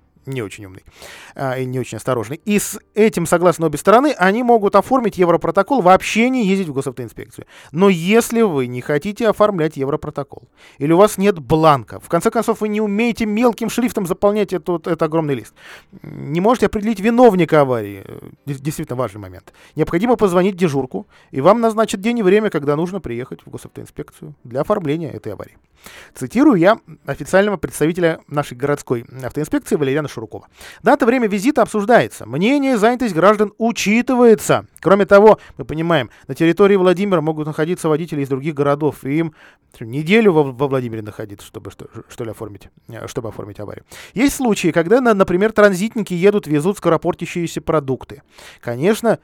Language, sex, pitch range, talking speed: Russian, male, 140-210 Hz, 150 wpm